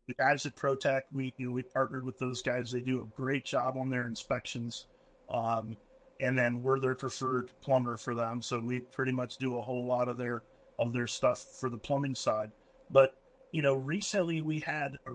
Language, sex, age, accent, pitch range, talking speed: English, male, 40-59, American, 125-145 Hz, 210 wpm